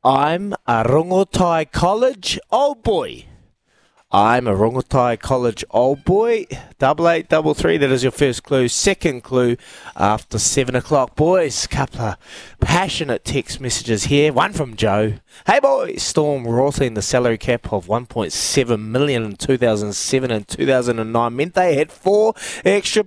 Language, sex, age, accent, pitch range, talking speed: English, male, 20-39, Australian, 110-150 Hz, 145 wpm